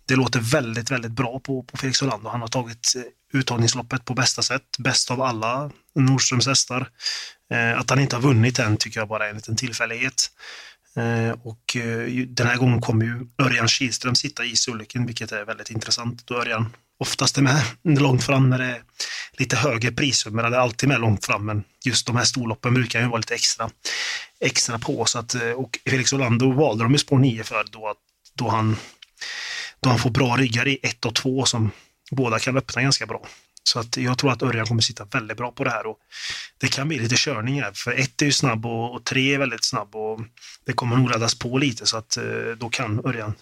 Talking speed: 205 wpm